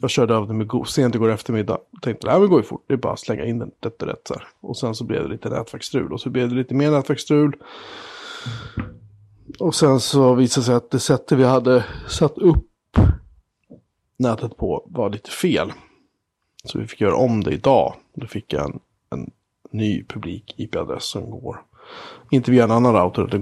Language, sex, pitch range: Swedish, male, 105-135 Hz